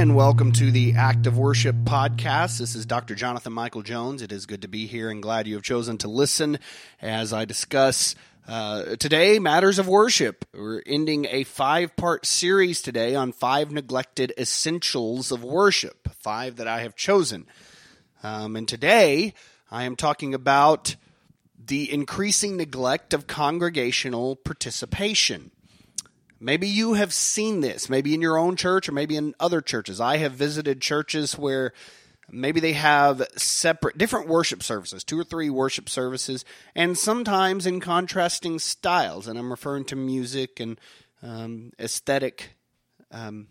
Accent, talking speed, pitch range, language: American, 155 wpm, 115-160 Hz, English